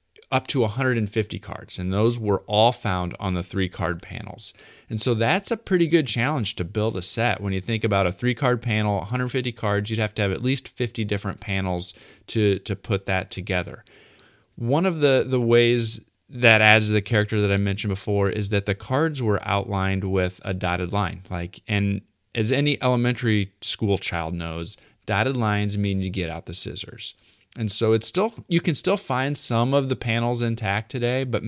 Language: English